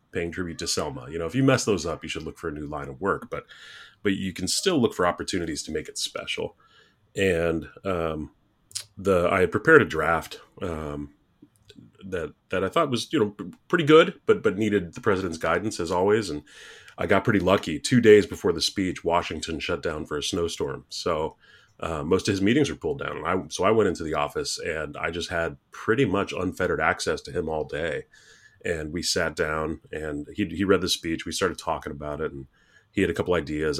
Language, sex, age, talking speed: English, male, 30-49, 220 wpm